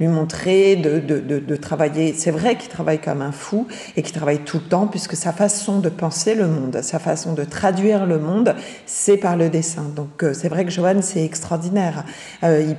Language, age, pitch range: French, 40-59, 160-195 Hz